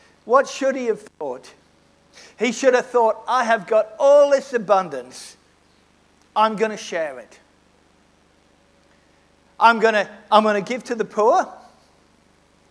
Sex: male